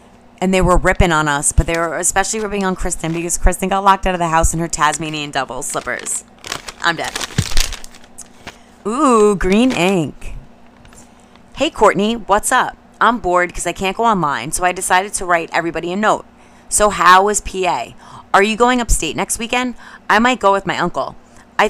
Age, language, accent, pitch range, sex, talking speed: 30-49, English, American, 165-220 Hz, female, 185 wpm